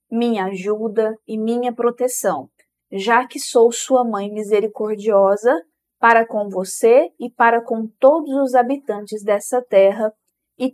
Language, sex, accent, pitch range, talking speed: Portuguese, female, Brazilian, 210-265 Hz, 130 wpm